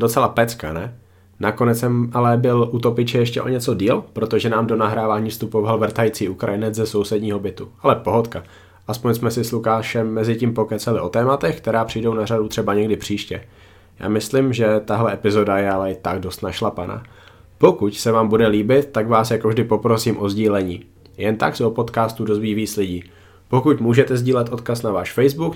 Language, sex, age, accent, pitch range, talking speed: Czech, male, 20-39, native, 105-120 Hz, 185 wpm